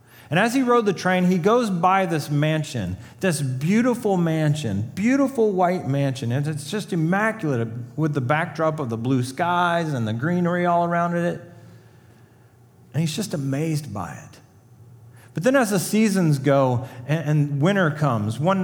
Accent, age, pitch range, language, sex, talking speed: American, 40-59, 120-175 Hz, English, male, 165 wpm